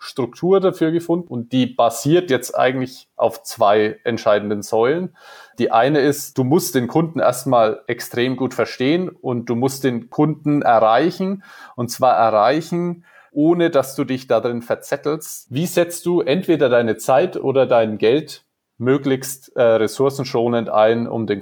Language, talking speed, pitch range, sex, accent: German, 150 wpm, 115-165 Hz, male, German